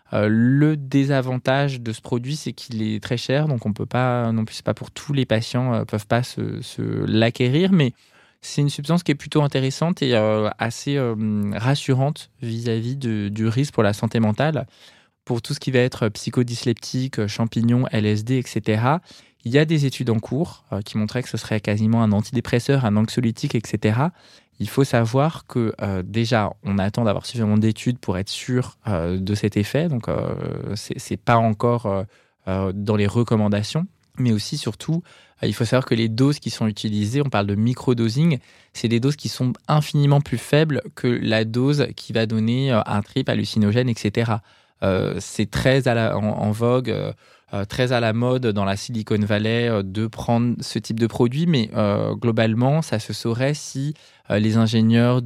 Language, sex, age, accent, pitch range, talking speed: French, male, 20-39, French, 110-130 Hz, 195 wpm